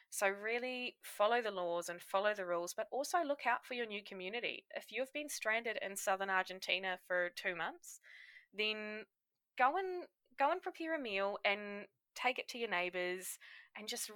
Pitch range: 180-240 Hz